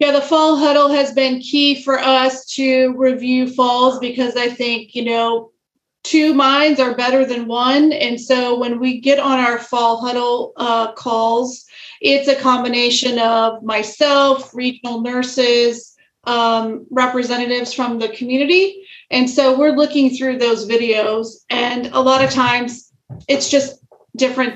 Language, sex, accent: English, female, American